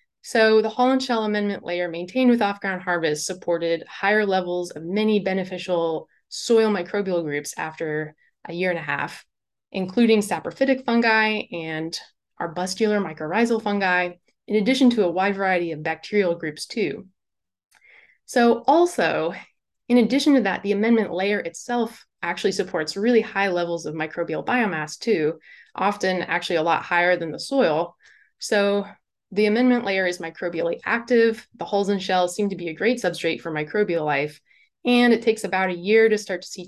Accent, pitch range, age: American, 170-220 Hz, 20-39